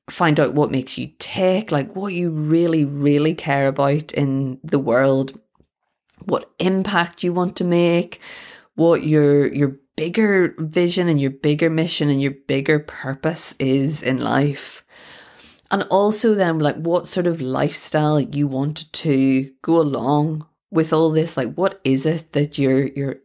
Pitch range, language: 135-170 Hz, English